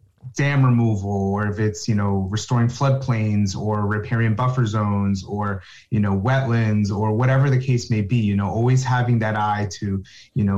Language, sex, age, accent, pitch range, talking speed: English, male, 30-49, American, 105-130 Hz, 180 wpm